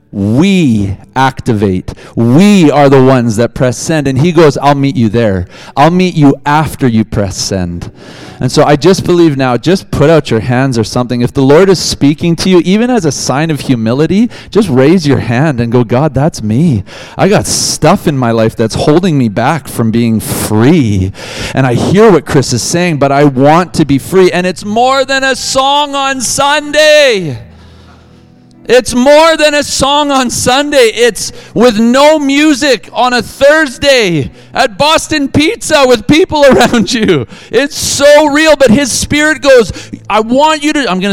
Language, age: English, 40-59